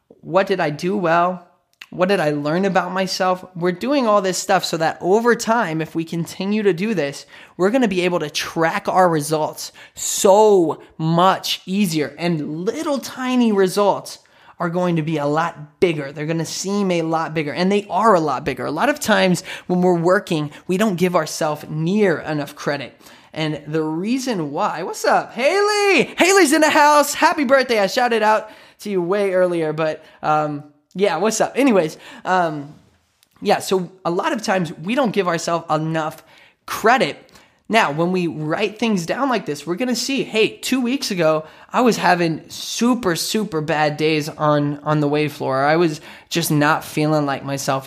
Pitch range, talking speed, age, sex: 155-205 Hz, 185 wpm, 20-39, male